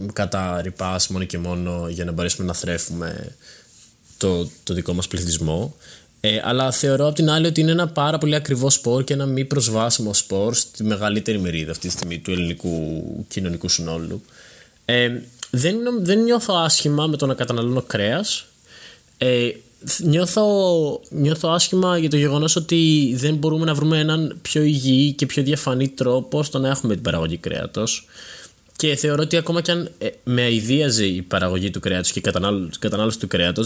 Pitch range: 95-140 Hz